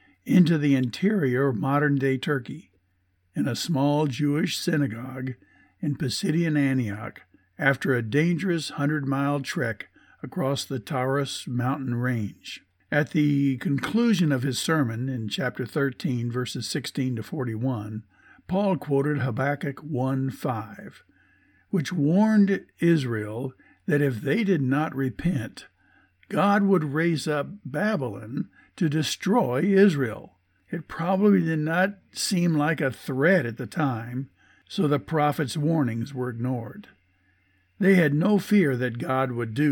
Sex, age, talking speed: male, 60-79, 125 wpm